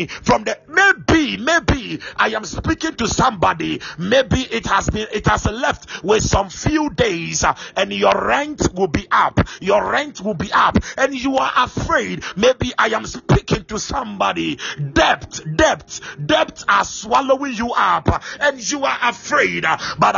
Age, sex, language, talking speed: 50-69, male, English, 160 wpm